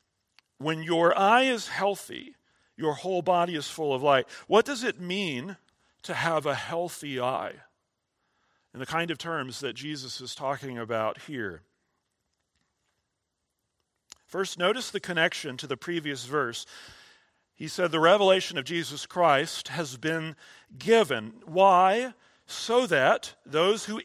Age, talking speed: 40-59, 135 wpm